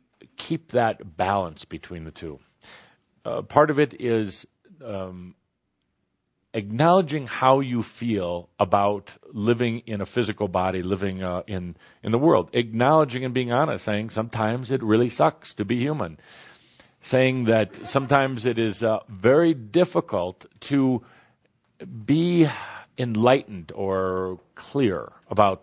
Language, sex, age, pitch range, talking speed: English, male, 50-69, 100-125 Hz, 125 wpm